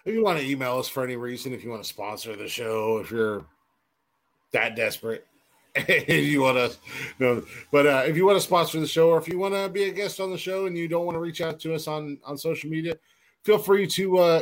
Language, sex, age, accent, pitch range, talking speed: English, male, 30-49, American, 125-195 Hz, 260 wpm